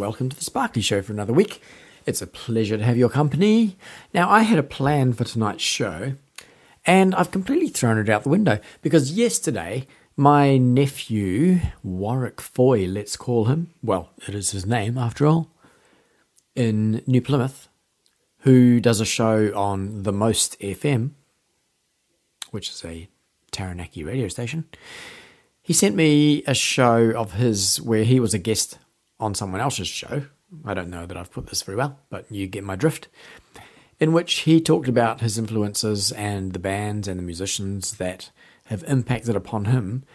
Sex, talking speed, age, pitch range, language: male, 165 wpm, 40-59, 100-140 Hz, English